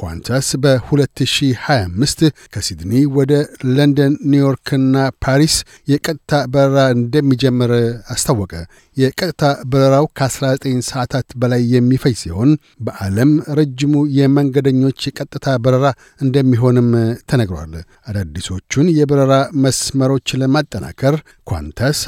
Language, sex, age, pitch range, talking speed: Amharic, male, 60-79, 120-145 Hz, 85 wpm